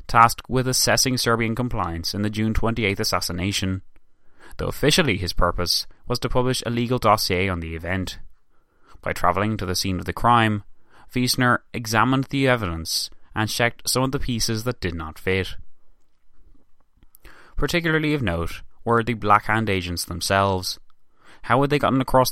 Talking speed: 155 wpm